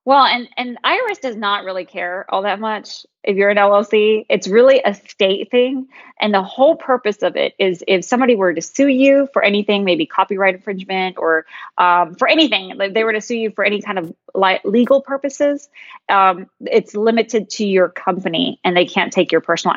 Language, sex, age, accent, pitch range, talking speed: English, female, 20-39, American, 185-235 Hz, 205 wpm